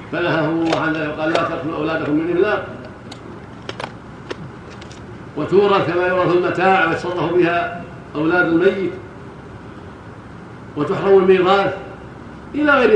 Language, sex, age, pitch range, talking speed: Arabic, male, 60-79, 145-170 Hz, 95 wpm